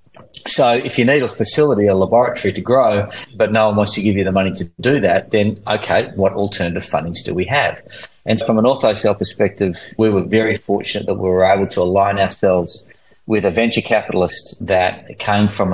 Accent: Australian